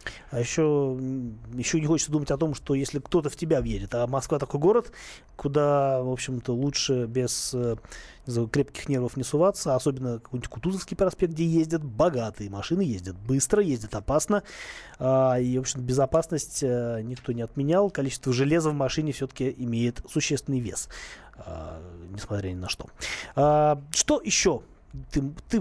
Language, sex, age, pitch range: Russian, male, 20-39, 120-160 Hz